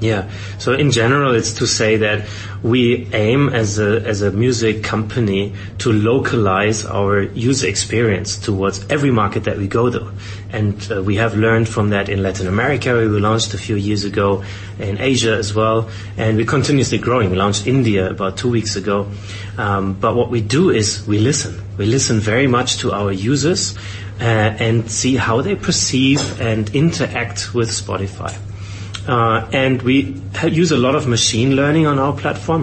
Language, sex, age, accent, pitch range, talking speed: English, male, 30-49, German, 100-125 Hz, 175 wpm